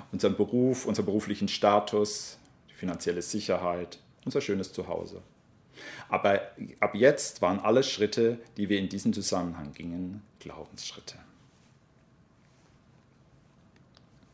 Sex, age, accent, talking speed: male, 40-59, German, 100 wpm